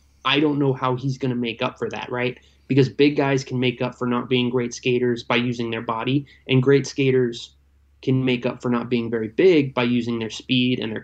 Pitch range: 115-130 Hz